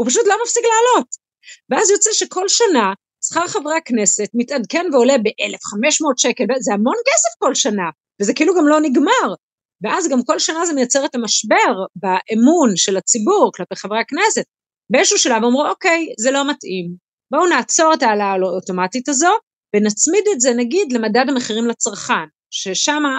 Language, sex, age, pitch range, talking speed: Hebrew, female, 30-49, 200-305 Hz, 160 wpm